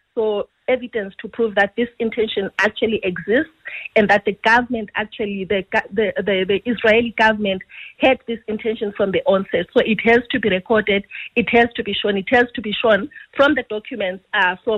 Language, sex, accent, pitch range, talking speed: English, female, South African, 200-235 Hz, 190 wpm